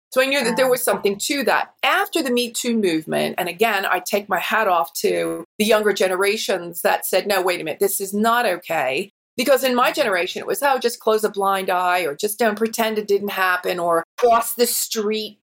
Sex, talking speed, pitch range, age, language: female, 225 wpm, 190-245 Hz, 30-49, English